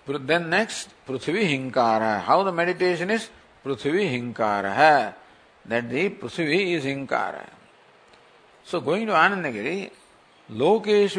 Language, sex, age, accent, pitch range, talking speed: English, male, 50-69, Indian, 150-200 Hz, 105 wpm